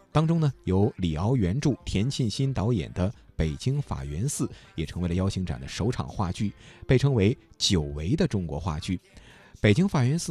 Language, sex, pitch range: Chinese, male, 90-135 Hz